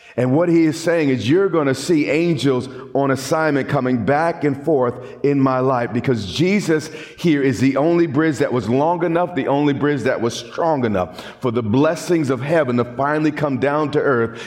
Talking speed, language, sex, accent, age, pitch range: 205 wpm, English, male, American, 40-59, 125-155 Hz